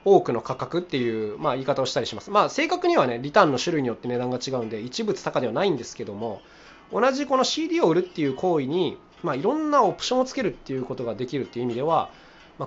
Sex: male